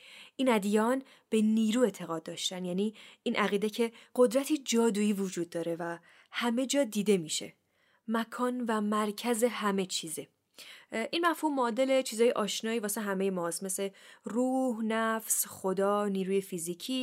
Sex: female